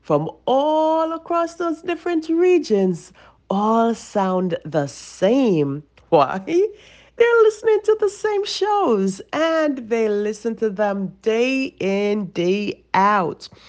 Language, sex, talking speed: English, female, 115 wpm